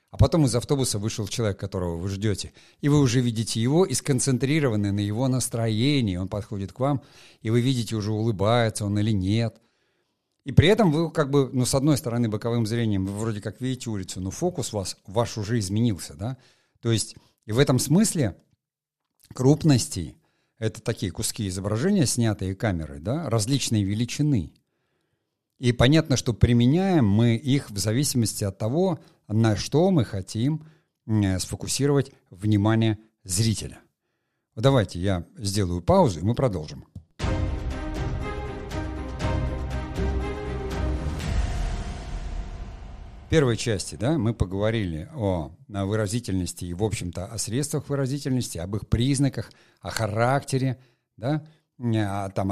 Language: Russian